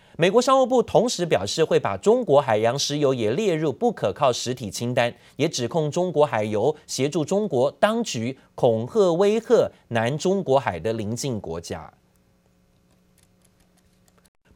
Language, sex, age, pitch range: Chinese, male, 30-49, 120-185 Hz